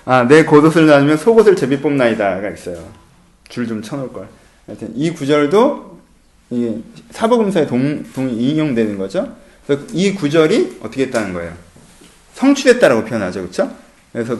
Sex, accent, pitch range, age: male, native, 145-235 Hz, 30-49